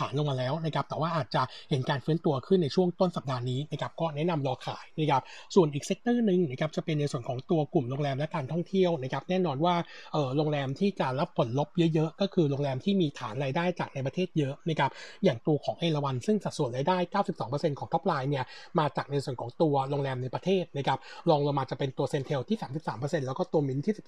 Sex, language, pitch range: male, Thai, 140-180 Hz